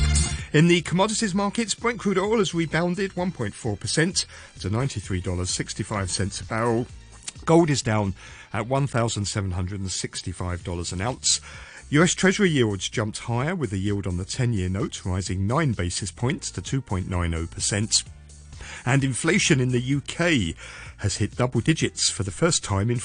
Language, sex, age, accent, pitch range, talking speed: English, male, 40-59, British, 95-125 Hz, 140 wpm